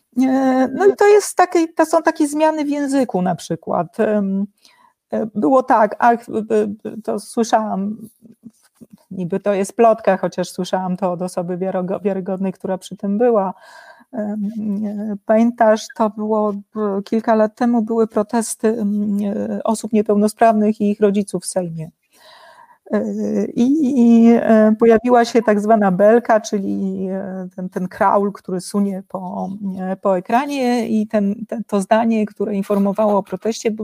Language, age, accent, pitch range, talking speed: Polish, 40-59, native, 200-250 Hz, 130 wpm